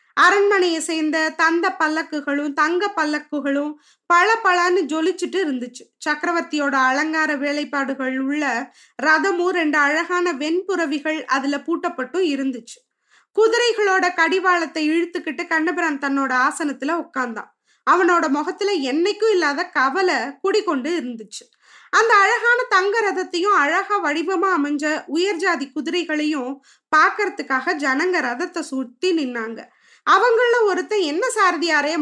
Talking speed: 100 wpm